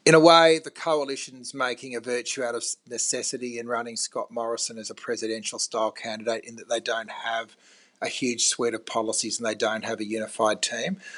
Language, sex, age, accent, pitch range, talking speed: English, male, 30-49, Australian, 120-145 Hz, 200 wpm